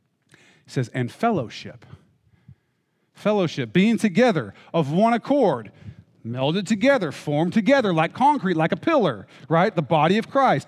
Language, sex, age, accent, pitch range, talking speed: English, male, 40-59, American, 140-190 Hz, 135 wpm